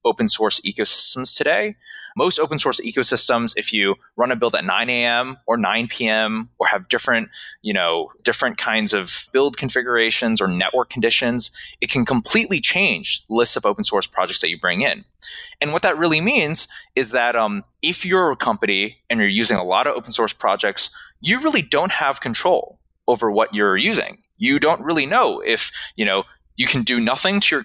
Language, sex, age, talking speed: English, male, 20-39, 185 wpm